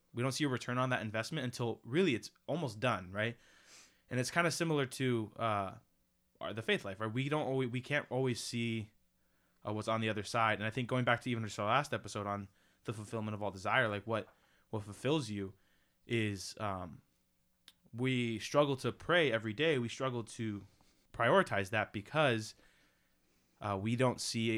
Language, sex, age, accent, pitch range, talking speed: English, male, 20-39, American, 105-130 Hz, 190 wpm